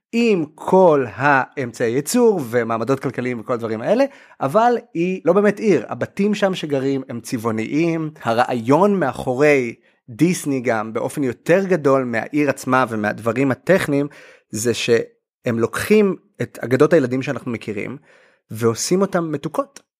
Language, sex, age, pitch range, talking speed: Hebrew, male, 30-49, 125-180 Hz, 125 wpm